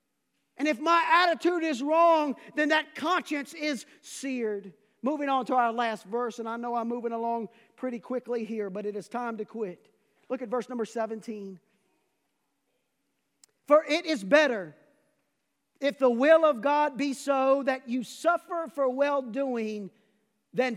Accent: American